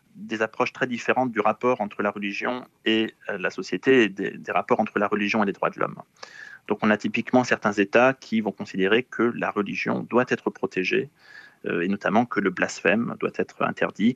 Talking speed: 200 wpm